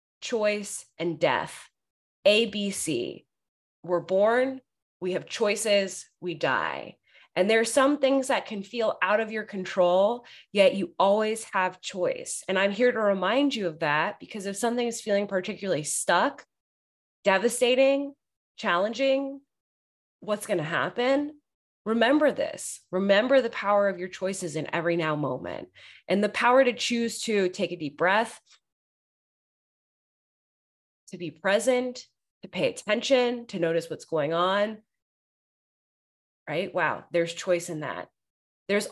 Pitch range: 190-255 Hz